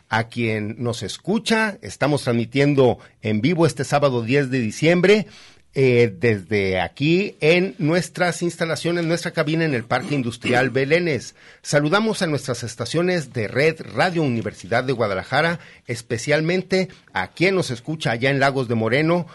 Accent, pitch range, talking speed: Mexican, 120-160 Hz, 145 wpm